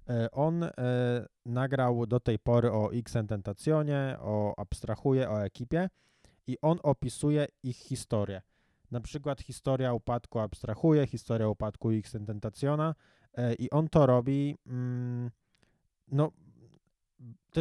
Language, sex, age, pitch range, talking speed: Polish, male, 20-39, 110-135 Hz, 100 wpm